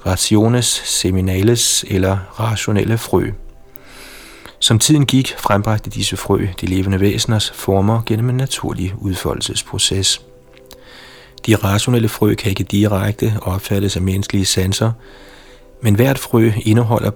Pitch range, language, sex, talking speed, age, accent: 95-115 Hz, Danish, male, 115 wpm, 30-49, native